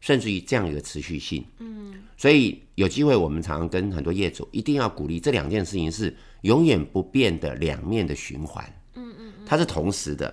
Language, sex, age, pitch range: Chinese, male, 50-69, 85-120 Hz